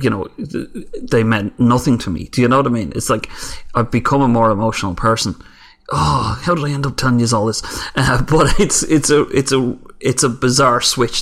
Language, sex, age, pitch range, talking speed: English, male, 30-49, 110-135 Hz, 225 wpm